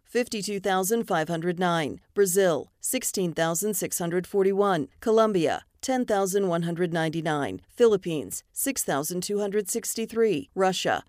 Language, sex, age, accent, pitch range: English, female, 40-59, American, 165-215 Hz